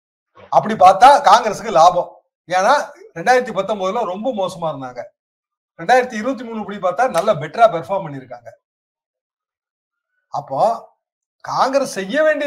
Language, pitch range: Tamil, 160-260 Hz